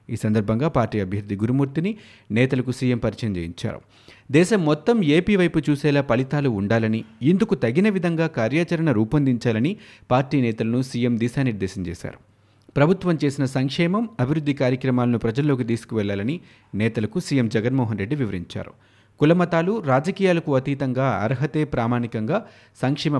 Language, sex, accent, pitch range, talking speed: Telugu, male, native, 110-150 Hz, 115 wpm